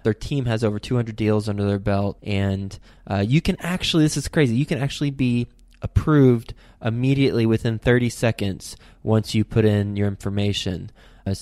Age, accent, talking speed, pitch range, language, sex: 20-39, American, 175 wpm, 100-130 Hz, English, male